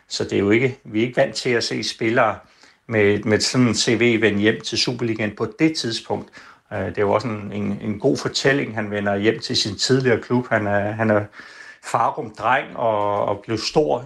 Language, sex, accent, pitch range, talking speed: Danish, male, native, 105-115 Hz, 210 wpm